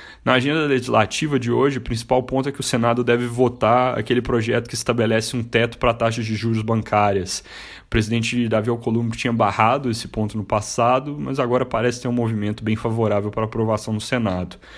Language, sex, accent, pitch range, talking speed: Portuguese, male, Brazilian, 105-120 Hz, 195 wpm